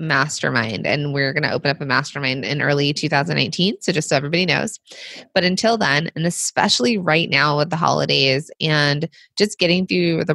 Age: 20-39